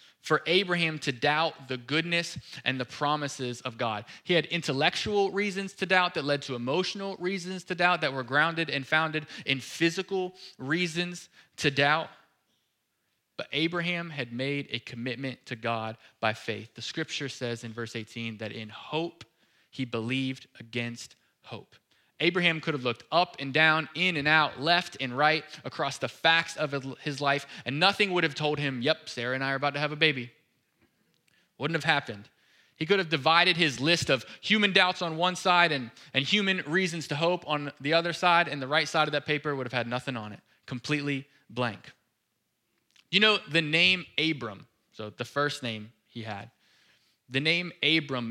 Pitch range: 125-170 Hz